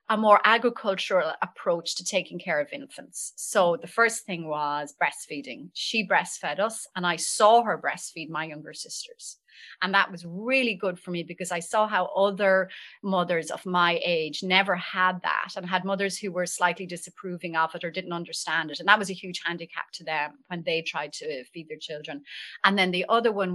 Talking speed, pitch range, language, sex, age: 200 wpm, 170-215 Hz, English, female, 30-49